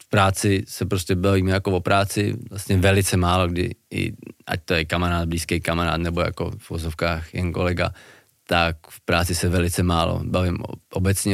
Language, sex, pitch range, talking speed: Czech, male, 90-105 Hz, 170 wpm